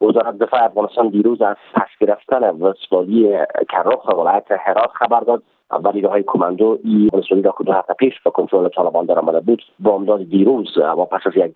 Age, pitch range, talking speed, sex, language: 40-59, 95-115 Hz, 165 wpm, male, Persian